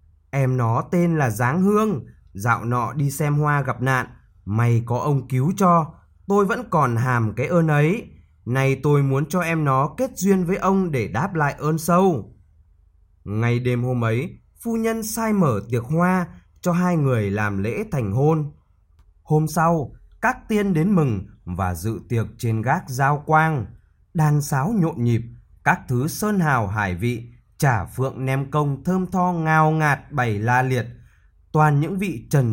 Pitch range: 105-155 Hz